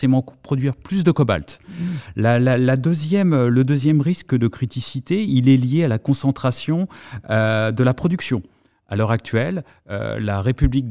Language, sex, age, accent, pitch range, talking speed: French, male, 30-49, French, 110-135 Hz, 160 wpm